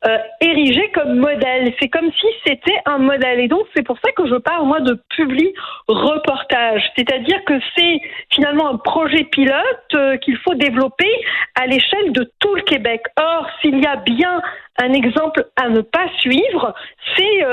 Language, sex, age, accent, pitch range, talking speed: French, female, 50-69, French, 255-335 Hz, 180 wpm